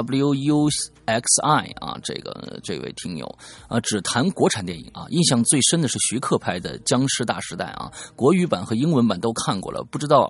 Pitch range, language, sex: 105-150 Hz, Chinese, male